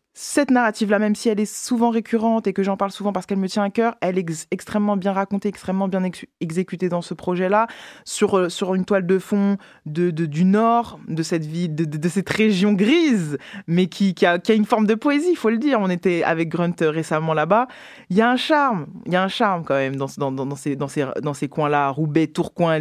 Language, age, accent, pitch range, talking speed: French, 20-39, French, 150-210 Hz, 255 wpm